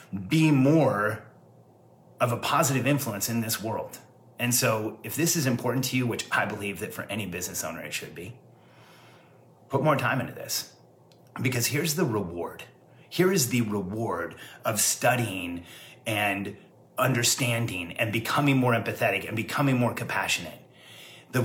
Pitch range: 120-165 Hz